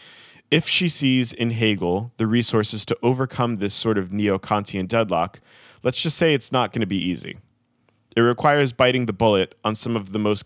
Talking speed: 190 wpm